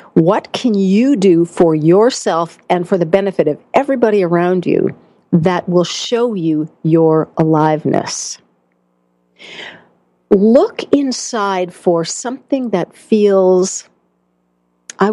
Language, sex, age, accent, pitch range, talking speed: English, female, 50-69, American, 165-225 Hz, 105 wpm